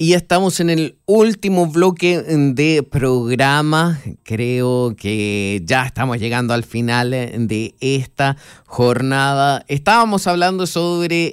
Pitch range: 120-155 Hz